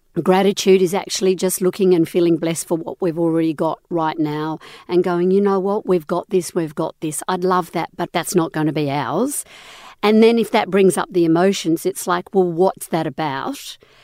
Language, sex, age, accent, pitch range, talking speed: English, female, 50-69, Australian, 165-200 Hz, 215 wpm